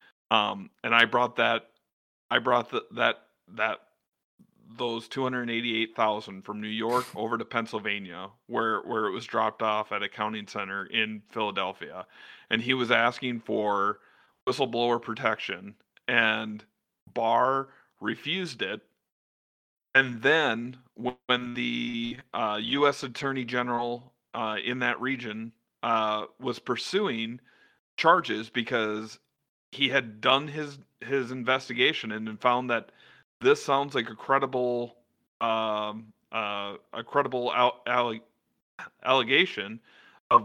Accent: American